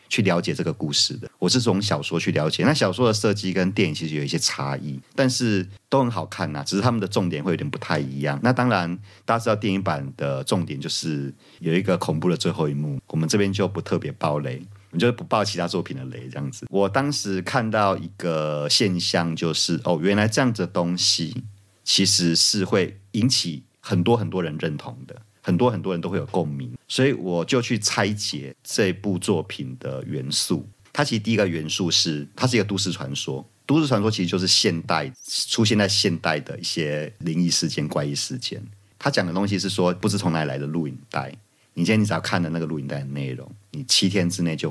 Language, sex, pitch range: Chinese, male, 80-105 Hz